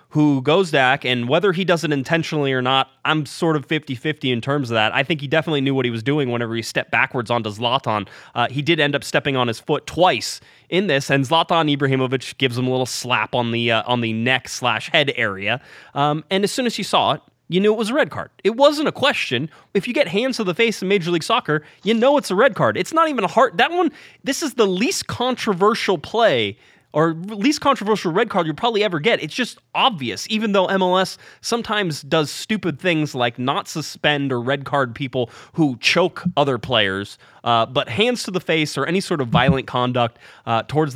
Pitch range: 125-185 Hz